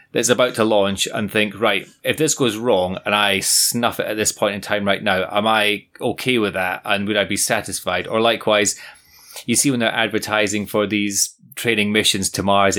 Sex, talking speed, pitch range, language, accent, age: male, 210 wpm, 100-120 Hz, English, British, 30-49